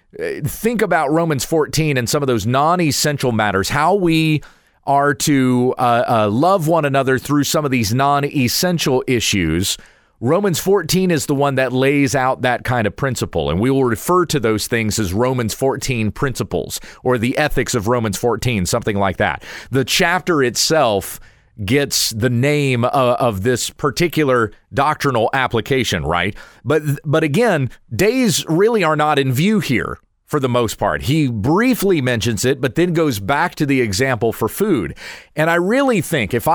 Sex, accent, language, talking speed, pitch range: male, American, English, 170 wpm, 120-155 Hz